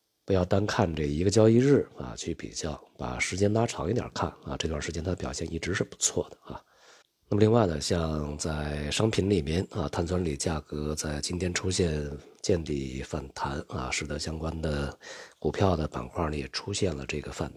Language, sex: Chinese, male